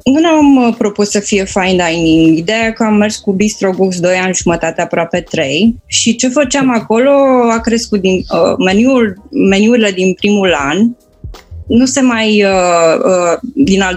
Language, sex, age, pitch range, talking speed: Romanian, female, 20-39, 185-225 Hz, 170 wpm